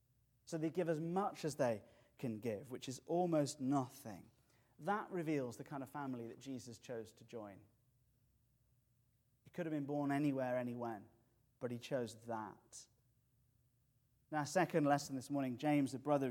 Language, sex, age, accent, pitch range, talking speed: English, male, 30-49, British, 120-145 Hz, 160 wpm